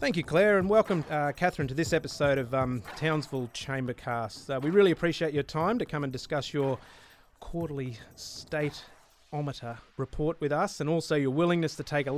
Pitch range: 130-160 Hz